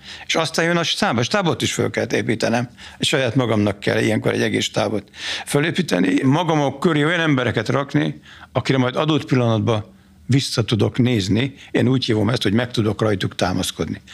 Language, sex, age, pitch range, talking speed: Hungarian, male, 60-79, 95-125 Hz, 165 wpm